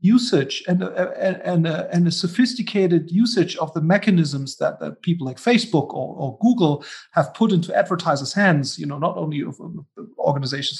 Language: German